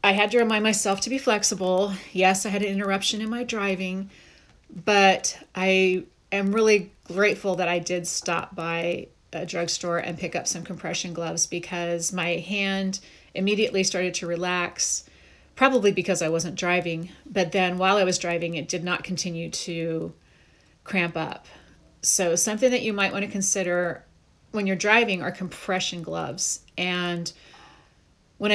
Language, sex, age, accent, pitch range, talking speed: English, female, 30-49, American, 175-200 Hz, 160 wpm